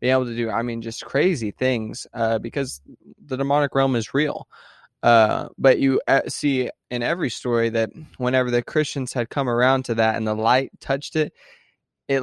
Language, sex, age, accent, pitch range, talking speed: English, male, 20-39, American, 115-135 Hz, 185 wpm